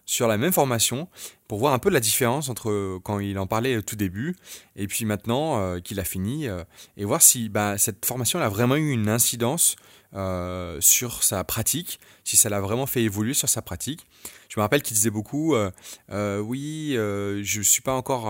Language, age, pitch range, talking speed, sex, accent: French, 20-39, 100-135 Hz, 215 wpm, male, French